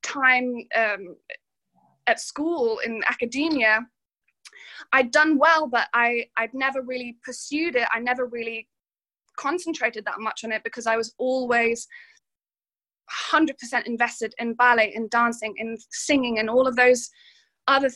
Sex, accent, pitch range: female, British, 225-270 Hz